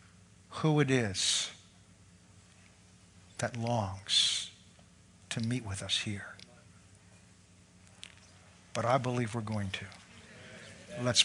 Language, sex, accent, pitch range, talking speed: English, male, American, 95-155 Hz, 90 wpm